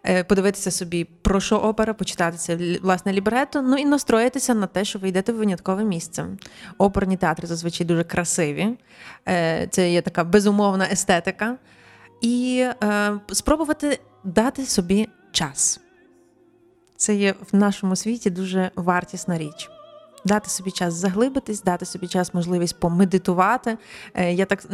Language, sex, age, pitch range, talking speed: Ukrainian, female, 20-39, 185-225 Hz, 130 wpm